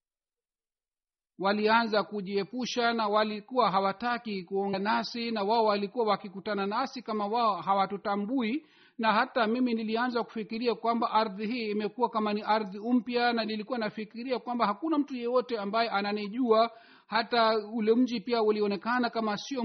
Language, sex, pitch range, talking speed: Swahili, male, 205-240 Hz, 135 wpm